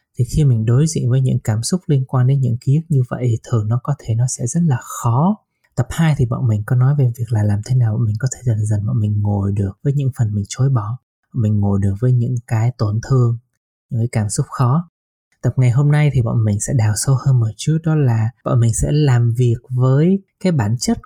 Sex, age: male, 20-39